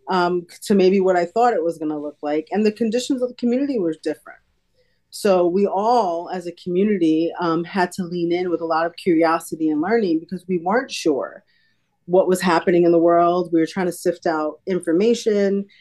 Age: 30-49